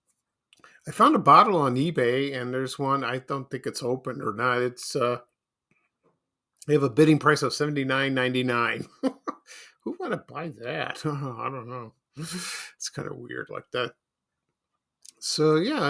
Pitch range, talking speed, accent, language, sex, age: 125-155 Hz, 155 wpm, American, English, male, 50-69